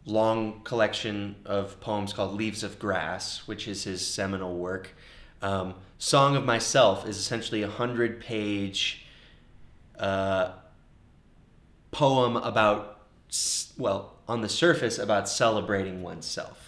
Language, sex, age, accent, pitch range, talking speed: English, male, 20-39, American, 95-115 Hz, 115 wpm